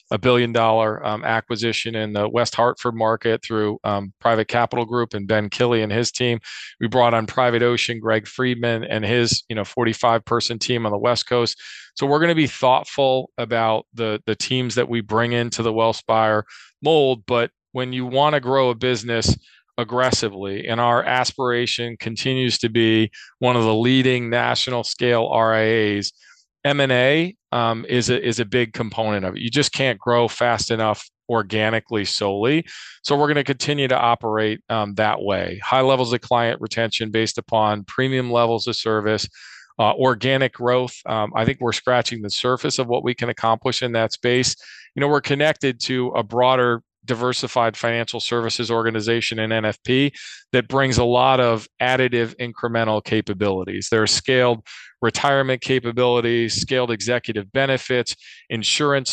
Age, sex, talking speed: 40-59, male, 165 wpm